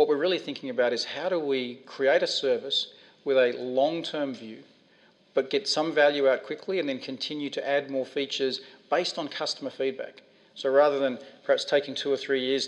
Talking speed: 205 wpm